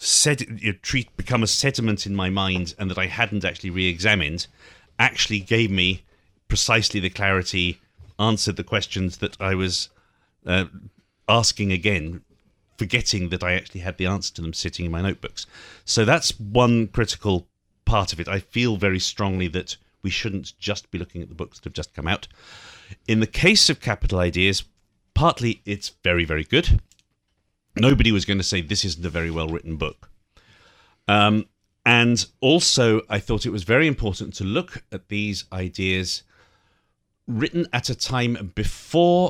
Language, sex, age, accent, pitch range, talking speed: English, male, 40-59, British, 90-110 Hz, 165 wpm